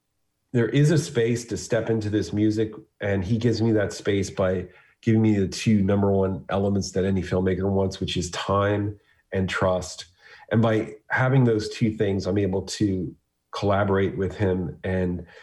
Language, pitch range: English, 95-110 Hz